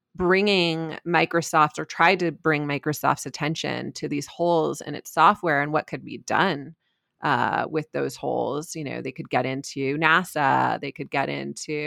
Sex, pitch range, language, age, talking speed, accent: female, 150-180 Hz, English, 30-49, 170 wpm, American